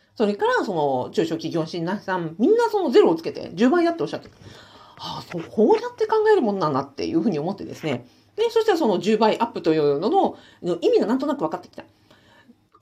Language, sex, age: Japanese, female, 40-59